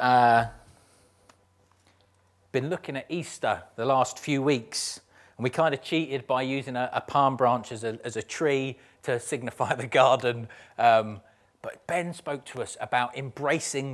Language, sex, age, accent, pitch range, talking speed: English, male, 30-49, British, 120-160 Hz, 155 wpm